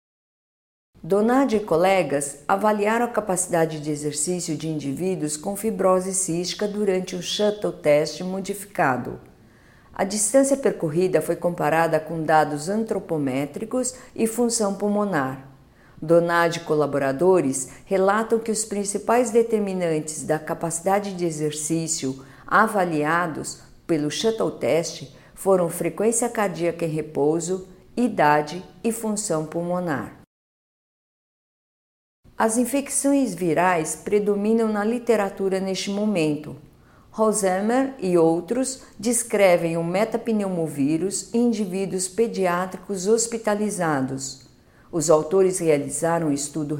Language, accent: Portuguese, Brazilian